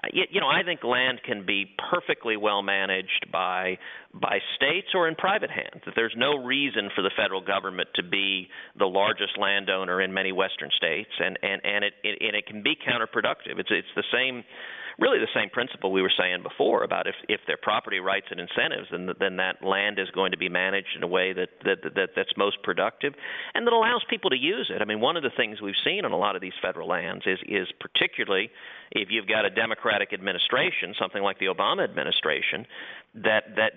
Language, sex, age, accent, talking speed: English, male, 40-59, American, 215 wpm